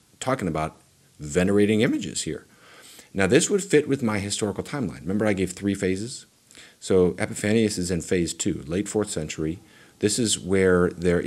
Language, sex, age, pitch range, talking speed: English, male, 40-59, 85-100 Hz, 165 wpm